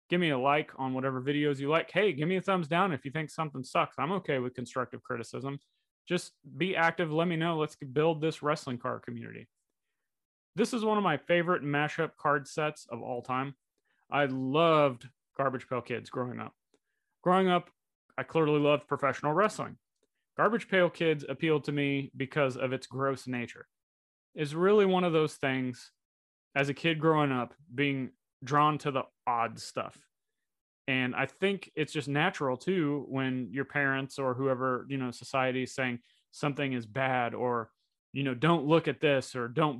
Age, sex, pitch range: 30-49, male, 125-155 Hz